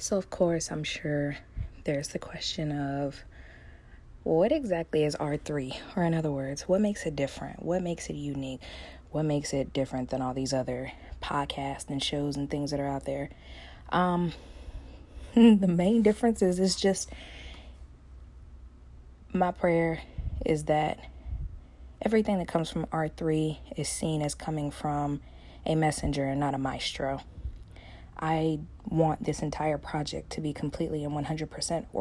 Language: English